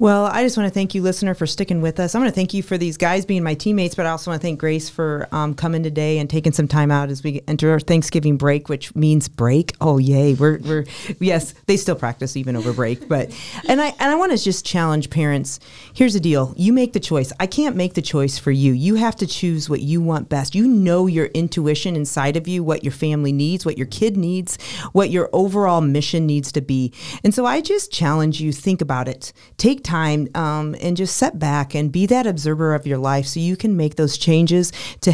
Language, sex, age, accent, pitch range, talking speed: English, female, 40-59, American, 145-185 Hz, 245 wpm